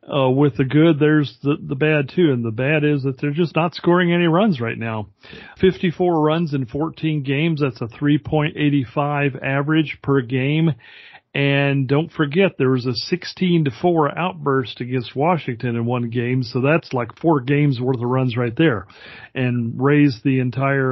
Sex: male